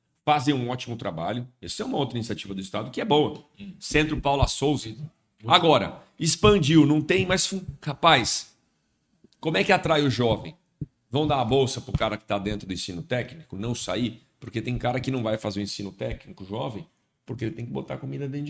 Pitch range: 115-150 Hz